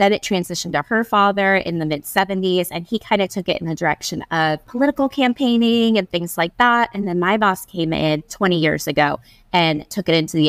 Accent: American